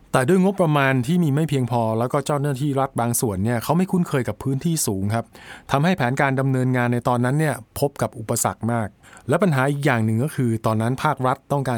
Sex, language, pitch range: male, Thai, 115-145 Hz